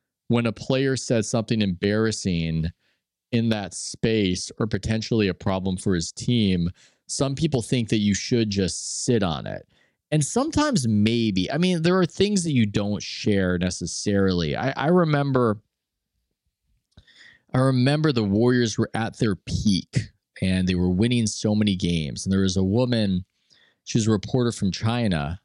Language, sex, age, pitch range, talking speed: English, male, 20-39, 95-120 Hz, 160 wpm